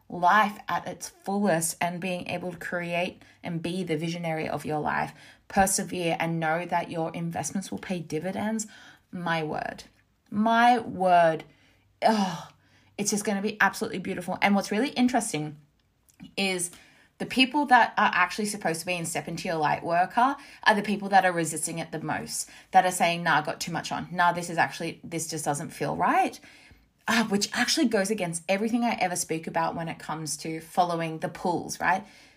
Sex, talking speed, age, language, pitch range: female, 190 wpm, 20-39, English, 165-210 Hz